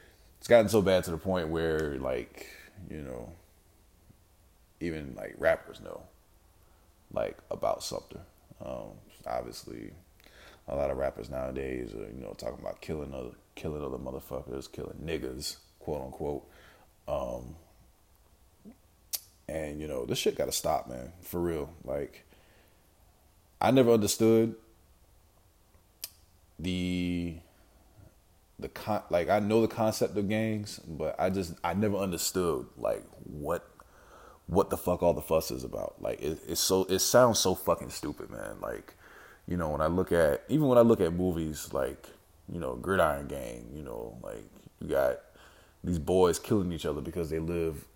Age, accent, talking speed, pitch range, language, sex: 20-39, American, 150 wpm, 80-95 Hz, English, male